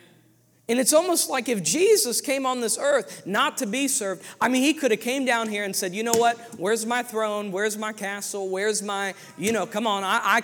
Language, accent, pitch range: English, American, 180-240 Hz